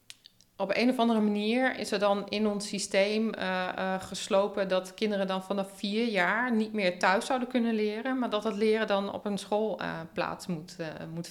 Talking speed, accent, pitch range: 205 wpm, Dutch, 175-205 Hz